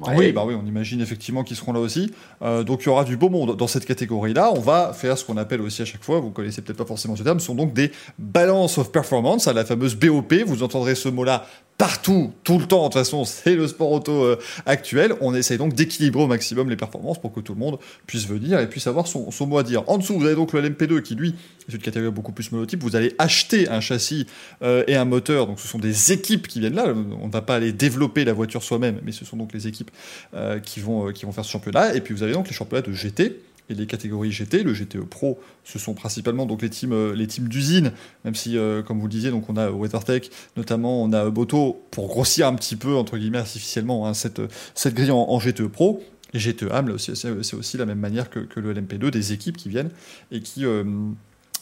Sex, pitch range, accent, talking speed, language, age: male, 110-140 Hz, French, 250 wpm, French, 20-39